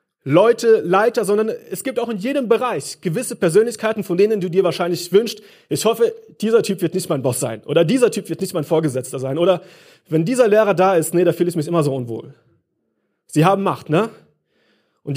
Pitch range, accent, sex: 160-210 Hz, German, male